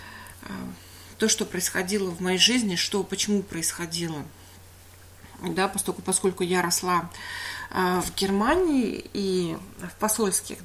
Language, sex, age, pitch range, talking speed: English, female, 30-49, 170-215 Hz, 105 wpm